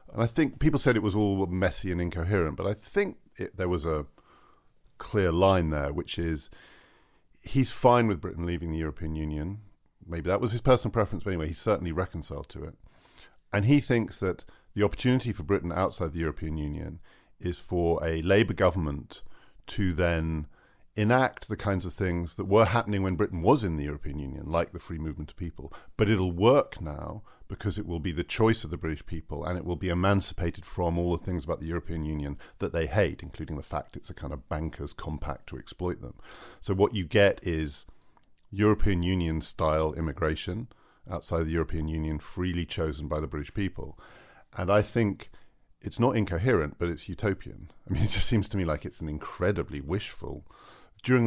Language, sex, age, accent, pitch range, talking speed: English, male, 40-59, British, 80-105 Hz, 195 wpm